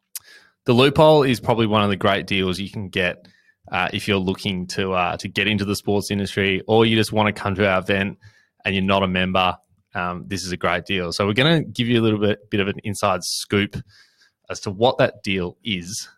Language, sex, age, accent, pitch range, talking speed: English, male, 20-39, Australian, 95-115 Hz, 235 wpm